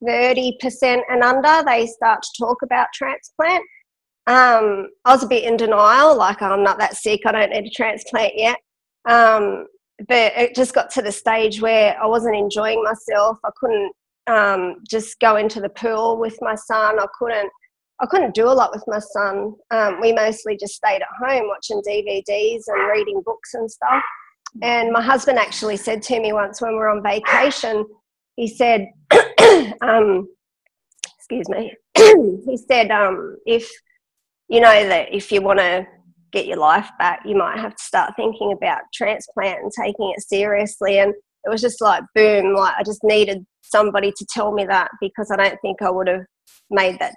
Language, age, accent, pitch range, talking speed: English, 40-59, Australian, 200-235 Hz, 185 wpm